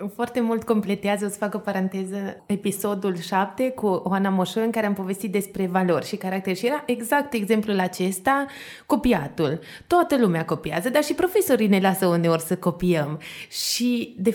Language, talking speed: Romanian, 165 wpm